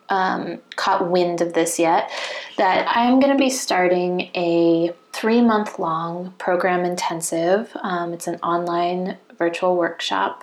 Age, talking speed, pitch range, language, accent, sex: 20-39, 125 wpm, 175-220 Hz, English, American, female